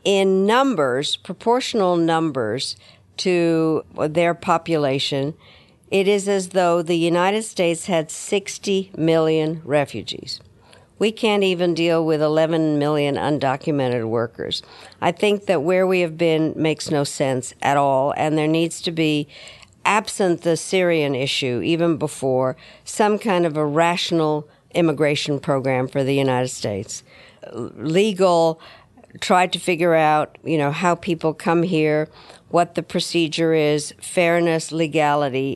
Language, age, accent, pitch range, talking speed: English, 60-79, American, 150-175 Hz, 130 wpm